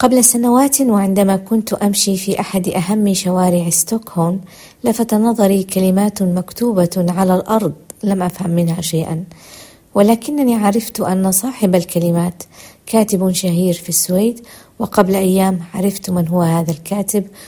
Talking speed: 125 wpm